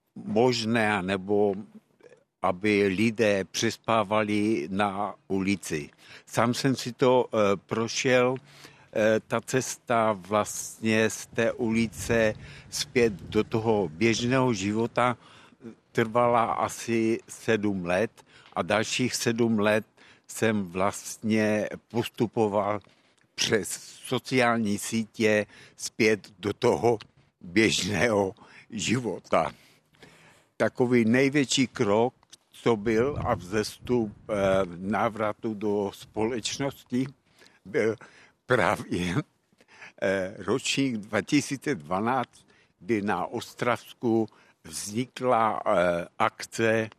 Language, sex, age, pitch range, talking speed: Czech, male, 60-79, 105-125 Hz, 80 wpm